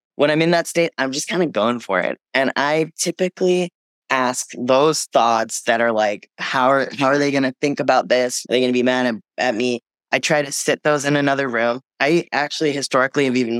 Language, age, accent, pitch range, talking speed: English, 20-39, American, 120-150 Hz, 225 wpm